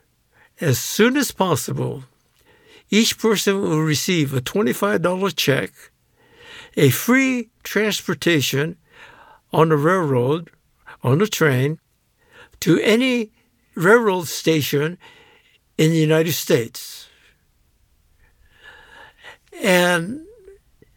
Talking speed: 85 wpm